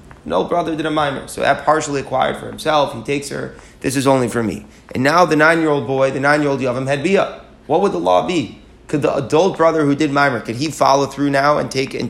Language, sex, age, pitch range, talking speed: English, male, 30-49, 130-155 Hz, 245 wpm